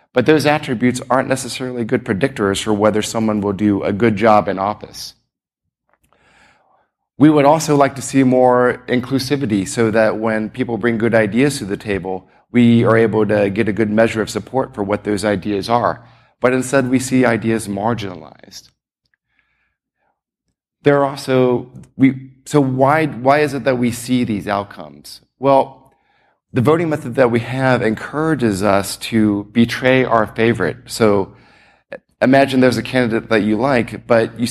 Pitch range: 105-130 Hz